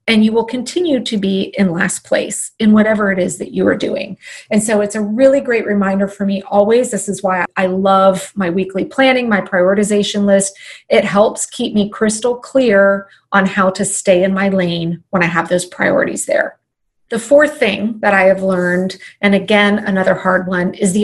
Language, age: English, 30-49